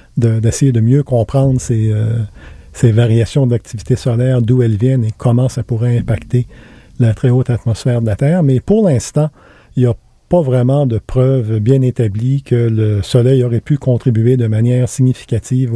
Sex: male